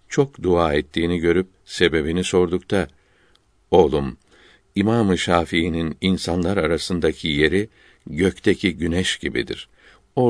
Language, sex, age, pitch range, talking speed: Turkish, male, 60-79, 80-100 Hz, 95 wpm